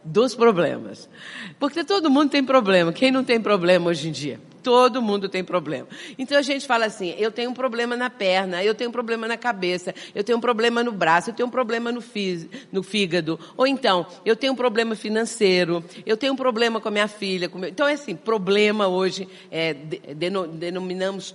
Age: 50-69